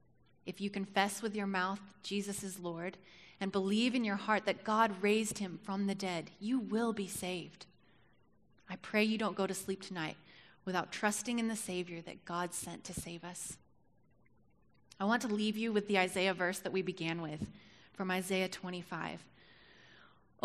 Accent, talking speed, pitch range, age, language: American, 180 wpm, 175-205 Hz, 30-49, English